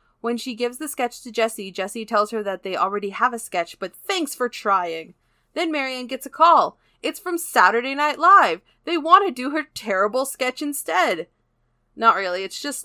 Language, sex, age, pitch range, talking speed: English, female, 20-39, 195-265 Hz, 195 wpm